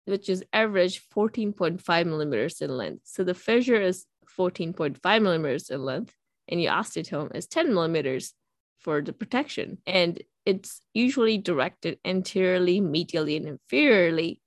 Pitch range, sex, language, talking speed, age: 170-210 Hz, female, English, 135 wpm, 20-39